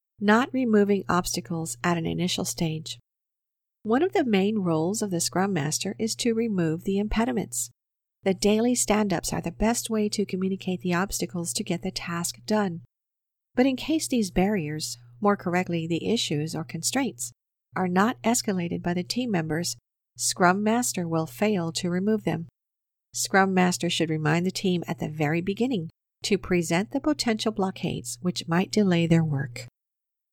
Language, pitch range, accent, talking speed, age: English, 165-215 Hz, American, 160 wpm, 50-69